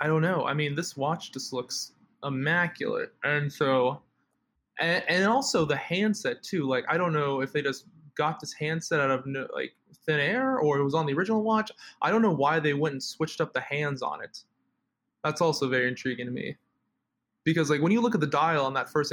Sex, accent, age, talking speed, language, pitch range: male, American, 20-39, 225 wpm, English, 135-160 Hz